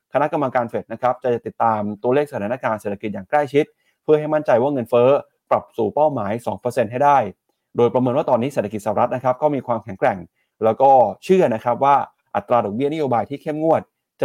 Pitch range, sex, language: 110-145 Hz, male, Thai